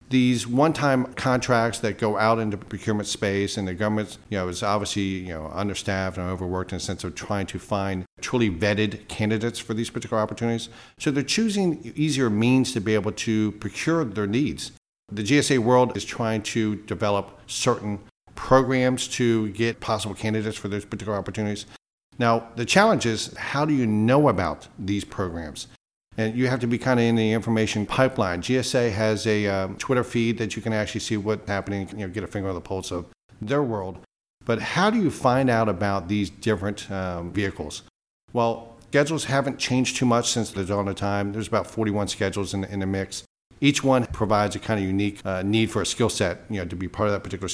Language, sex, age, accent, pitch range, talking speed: English, male, 50-69, American, 100-120 Hz, 205 wpm